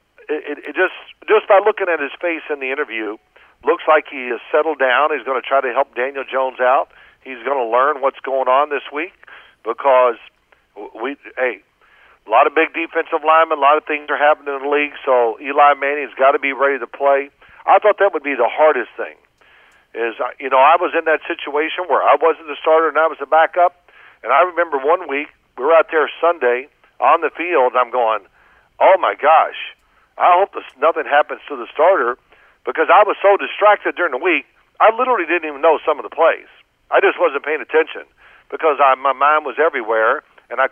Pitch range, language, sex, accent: 135-170 Hz, English, male, American